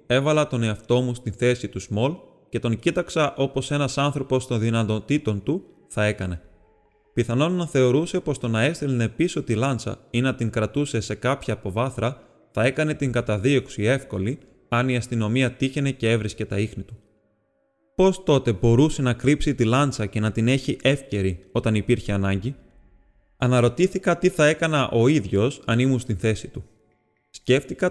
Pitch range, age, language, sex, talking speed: 105-135 Hz, 20-39, Greek, male, 165 wpm